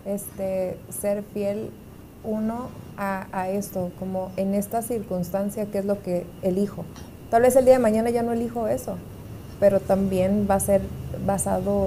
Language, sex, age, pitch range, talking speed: Spanish, female, 30-49, 180-200 Hz, 160 wpm